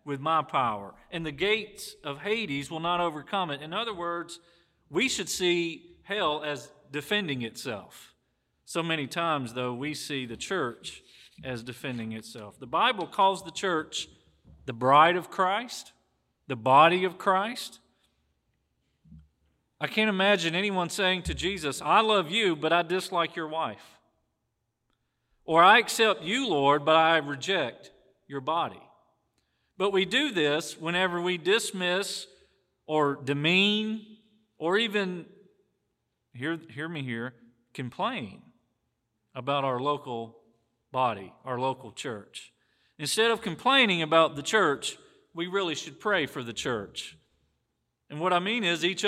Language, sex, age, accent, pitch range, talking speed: English, male, 40-59, American, 140-195 Hz, 140 wpm